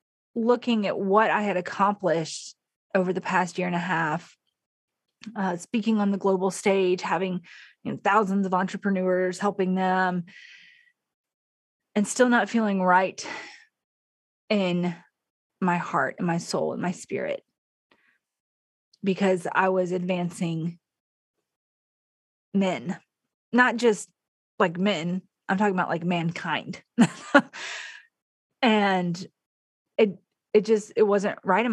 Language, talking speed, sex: English, 115 wpm, female